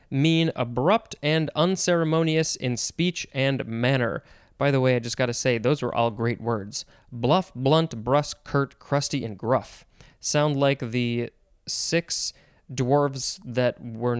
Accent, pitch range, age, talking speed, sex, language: American, 125-160 Hz, 20-39, 150 wpm, male, English